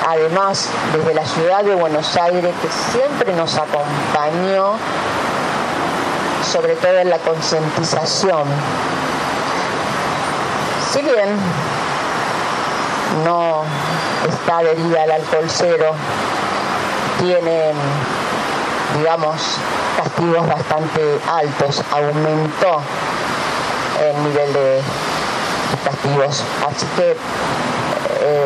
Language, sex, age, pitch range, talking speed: Spanish, female, 50-69, 145-170 Hz, 80 wpm